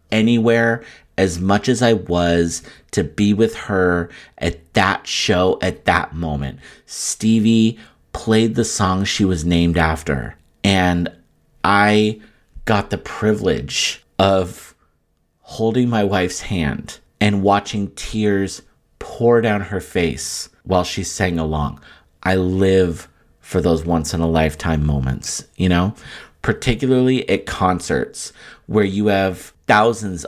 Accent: American